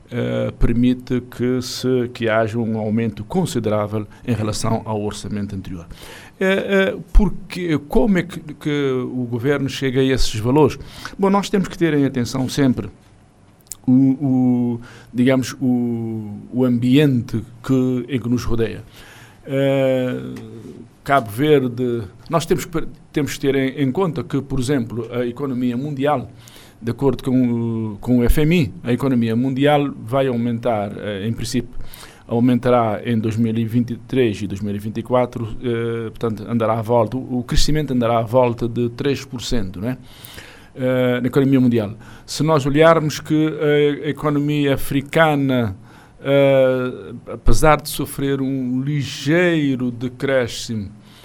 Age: 50-69